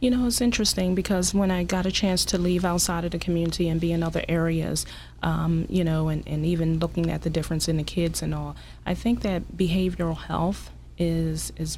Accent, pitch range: American, 155-170 Hz